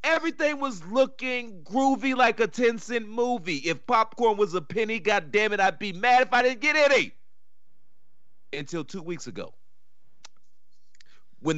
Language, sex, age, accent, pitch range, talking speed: English, male, 40-59, American, 155-255 Hz, 155 wpm